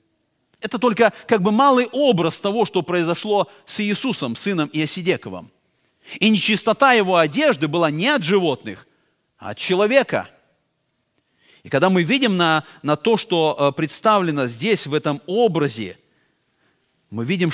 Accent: native